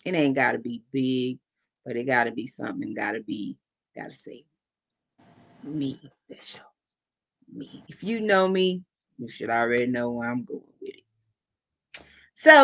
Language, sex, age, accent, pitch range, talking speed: English, female, 20-39, American, 115-195 Hz, 170 wpm